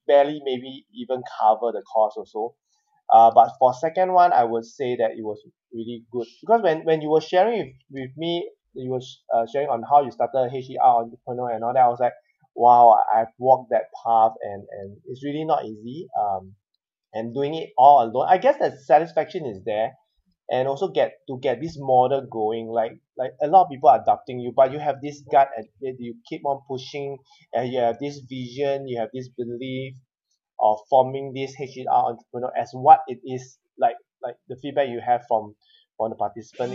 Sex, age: male, 20-39